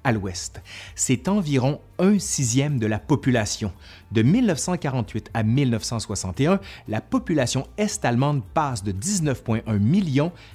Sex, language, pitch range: male, French, 105-145 Hz